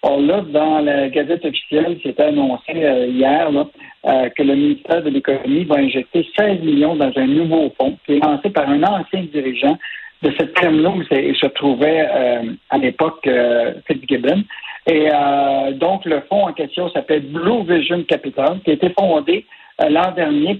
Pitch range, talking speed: 145-200 Hz, 185 wpm